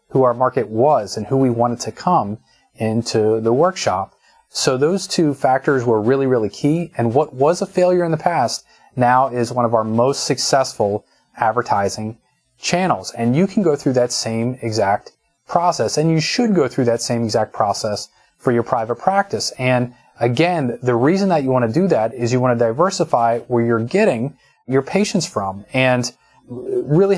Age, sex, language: 30-49, male, English